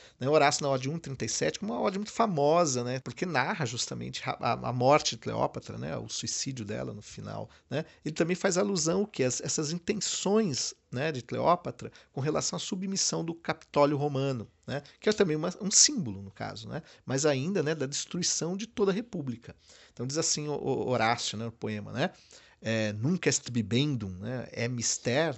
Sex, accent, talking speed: male, Brazilian, 185 wpm